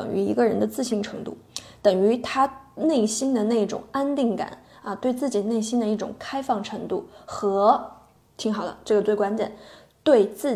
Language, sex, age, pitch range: Chinese, female, 20-39, 205-250 Hz